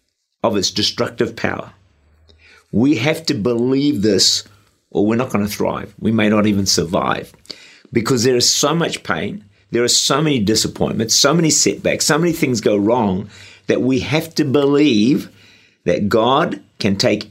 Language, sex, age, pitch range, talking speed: English, male, 50-69, 100-130 Hz, 165 wpm